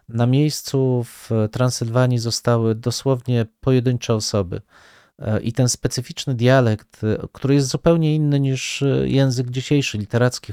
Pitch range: 105-135 Hz